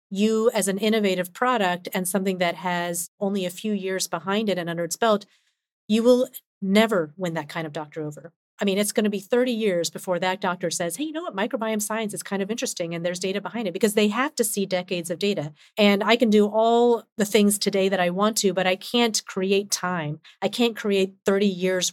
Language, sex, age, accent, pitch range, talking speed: English, female, 40-59, American, 175-215 Hz, 235 wpm